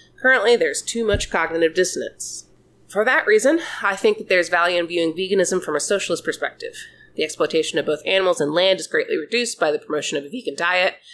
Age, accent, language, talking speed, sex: 30-49, American, English, 205 wpm, female